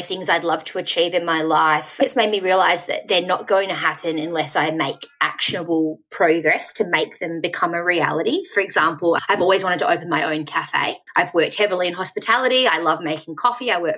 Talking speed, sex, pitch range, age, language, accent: 215 wpm, female, 165-225 Hz, 20-39, English, Australian